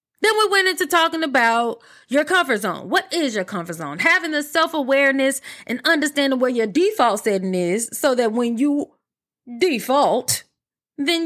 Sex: female